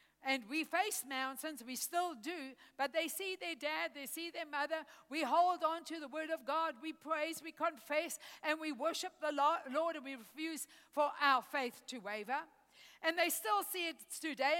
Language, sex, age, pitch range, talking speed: English, female, 60-79, 280-360 Hz, 195 wpm